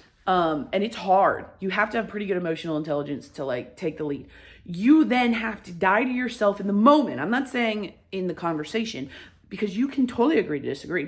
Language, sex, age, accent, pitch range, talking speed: English, female, 30-49, American, 185-255 Hz, 215 wpm